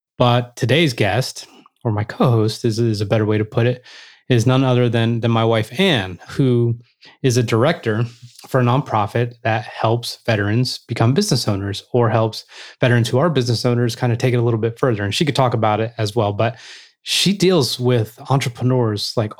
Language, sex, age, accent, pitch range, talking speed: English, male, 20-39, American, 115-135 Hz, 200 wpm